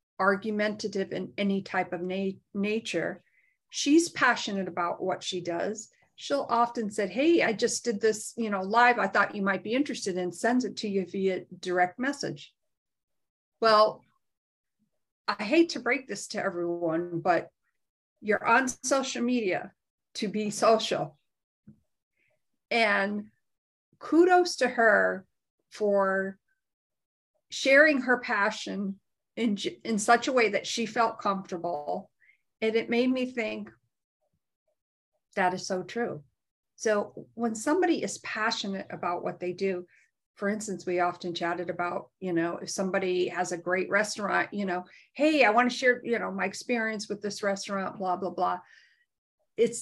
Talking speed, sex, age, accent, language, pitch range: 145 wpm, female, 50-69, American, English, 190-235 Hz